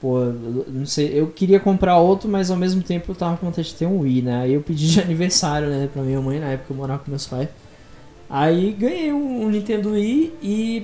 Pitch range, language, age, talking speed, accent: 140-190 Hz, Portuguese, 20-39, 235 wpm, Brazilian